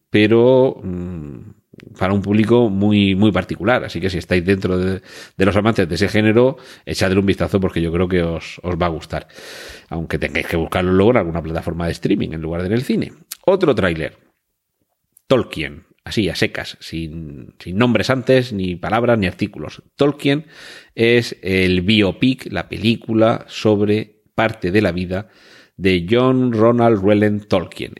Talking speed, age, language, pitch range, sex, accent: 165 wpm, 40-59, Spanish, 90-115 Hz, male, Spanish